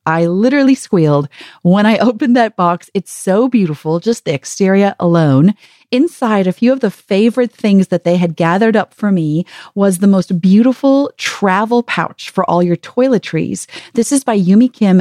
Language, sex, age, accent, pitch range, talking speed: English, female, 40-59, American, 180-245 Hz, 175 wpm